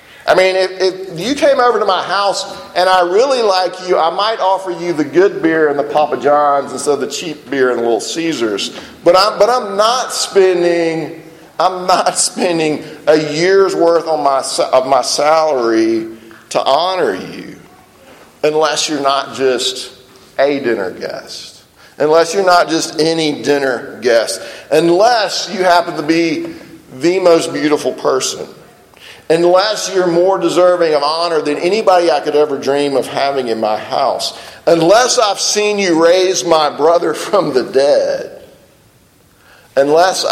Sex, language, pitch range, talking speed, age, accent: male, English, 145-185 Hz, 160 wpm, 40-59, American